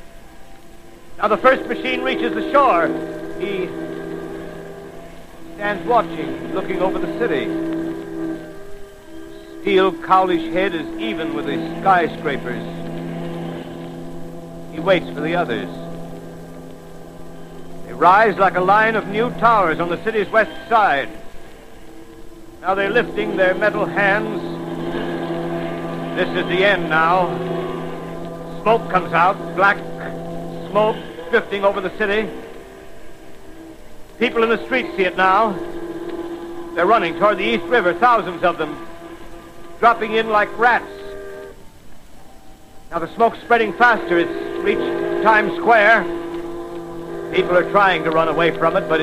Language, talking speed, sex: English, 120 wpm, male